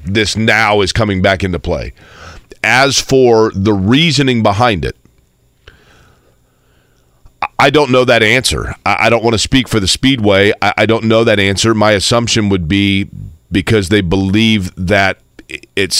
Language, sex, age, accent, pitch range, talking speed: English, male, 40-59, American, 100-115 Hz, 150 wpm